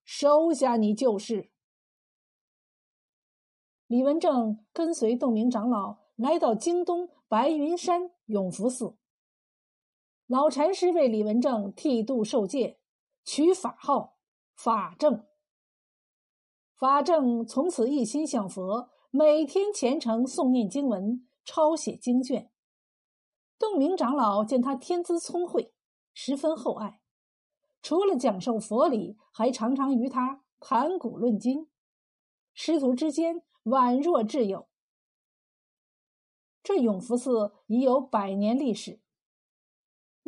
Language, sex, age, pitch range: Chinese, female, 50-69, 225-310 Hz